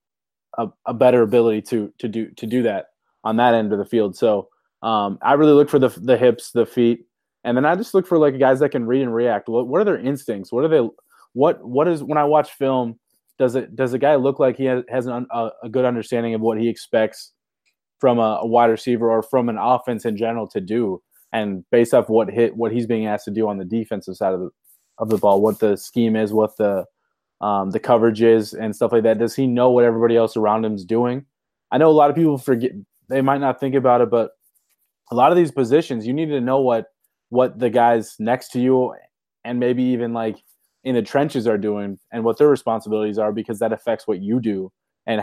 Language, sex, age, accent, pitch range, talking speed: English, male, 20-39, American, 110-130 Hz, 240 wpm